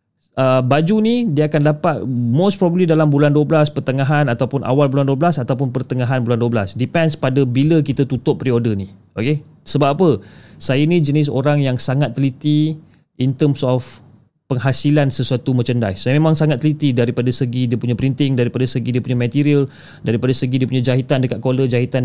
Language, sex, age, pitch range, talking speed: Malay, male, 30-49, 120-150 Hz, 175 wpm